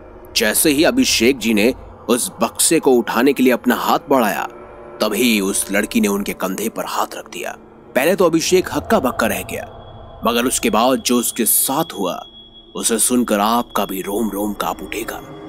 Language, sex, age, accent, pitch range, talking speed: Hindi, male, 30-49, native, 115-145 Hz, 105 wpm